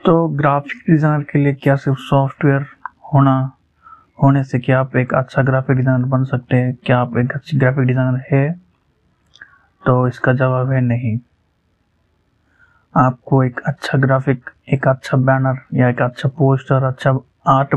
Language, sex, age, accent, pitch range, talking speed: Hindi, male, 20-39, native, 125-140 Hz, 150 wpm